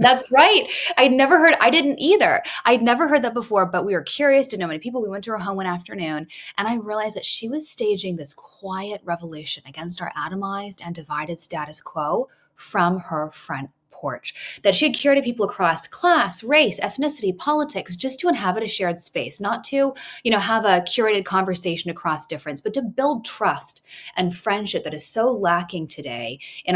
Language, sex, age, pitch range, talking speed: English, female, 20-39, 170-240 Hz, 195 wpm